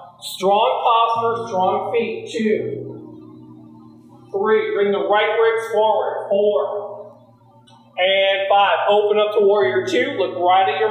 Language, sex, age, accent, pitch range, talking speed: English, male, 40-59, American, 190-240 Hz, 125 wpm